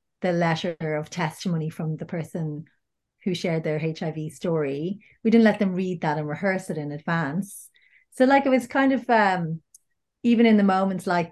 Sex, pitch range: female, 165-210 Hz